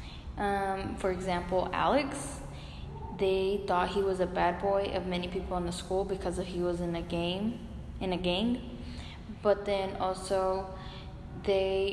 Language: English